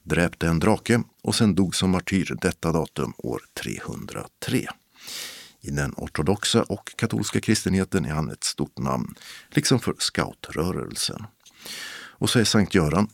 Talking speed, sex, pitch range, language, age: 140 wpm, male, 90-110 Hz, Swedish, 50-69